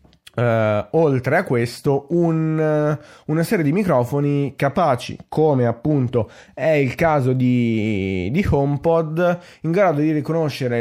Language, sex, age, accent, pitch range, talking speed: Italian, male, 20-39, native, 120-145 Hz, 110 wpm